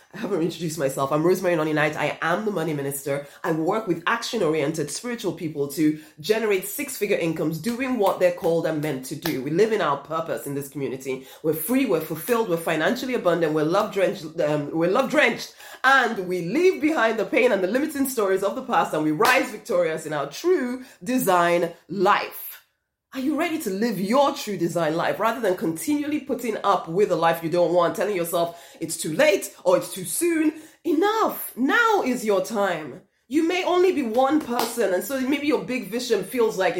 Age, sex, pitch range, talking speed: 30-49, female, 170-270 Hz, 195 wpm